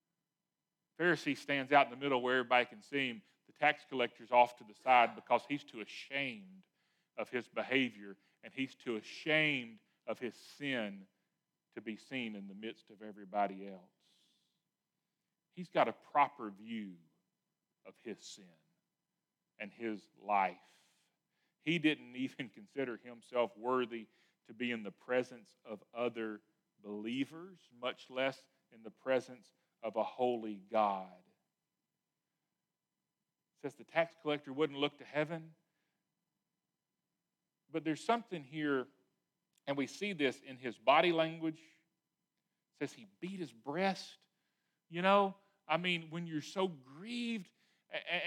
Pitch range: 125-180 Hz